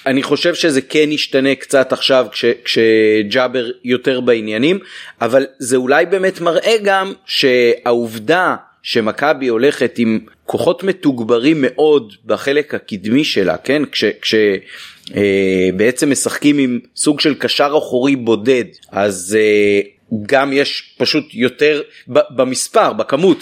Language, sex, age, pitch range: Hebrew, male, 30-49, 120-170 Hz